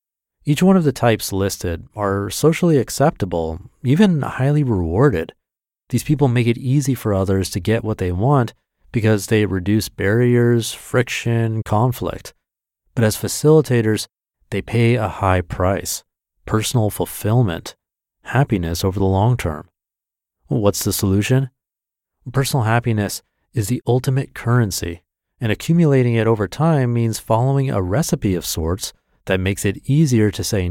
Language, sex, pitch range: English, male, 100-130 Hz